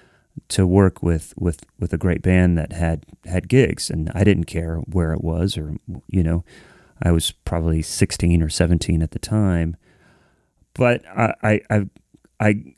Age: 30-49